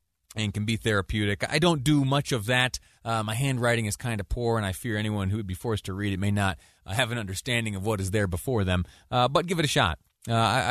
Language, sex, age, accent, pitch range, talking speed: English, male, 30-49, American, 95-130 Hz, 260 wpm